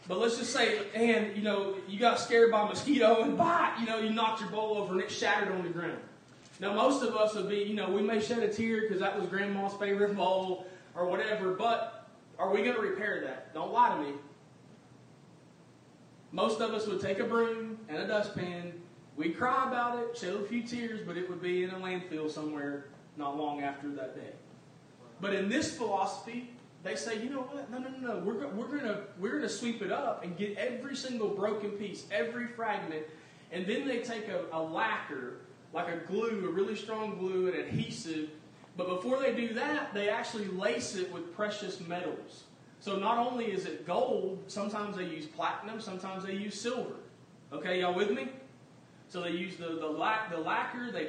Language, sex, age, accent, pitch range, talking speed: English, male, 20-39, American, 180-230 Hz, 200 wpm